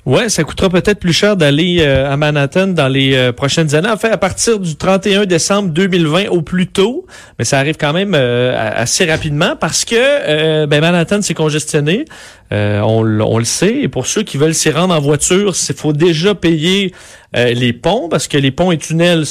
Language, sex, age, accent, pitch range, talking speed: French, male, 40-59, Canadian, 140-180 Hz, 215 wpm